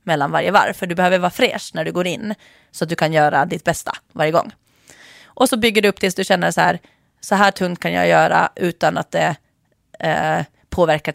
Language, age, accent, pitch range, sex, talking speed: English, 30-49, Swedish, 160-200 Hz, female, 215 wpm